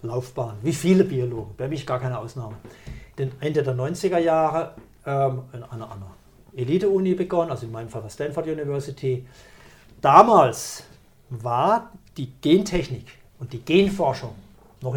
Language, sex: German, male